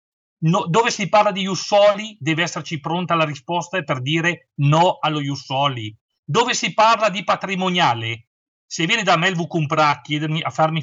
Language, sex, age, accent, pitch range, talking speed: Italian, male, 40-59, native, 150-190 Hz, 170 wpm